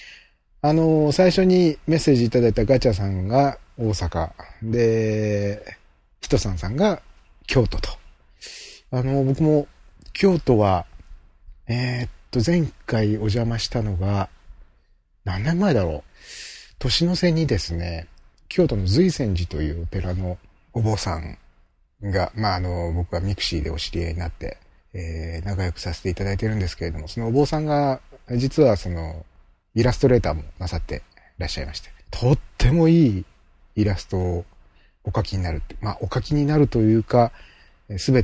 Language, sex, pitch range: Japanese, male, 85-125 Hz